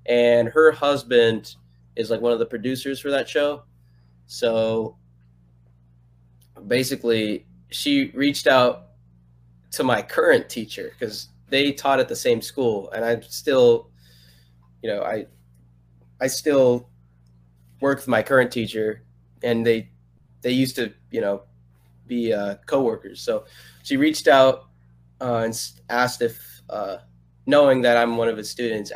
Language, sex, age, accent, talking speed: English, male, 20-39, American, 140 wpm